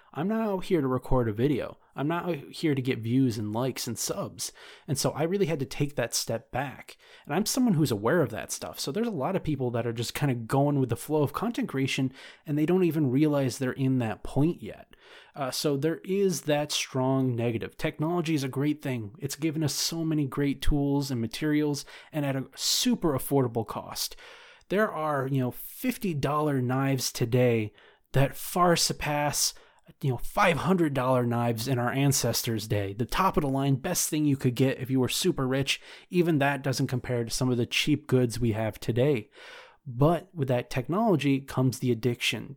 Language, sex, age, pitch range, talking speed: English, male, 30-49, 125-155 Hz, 205 wpm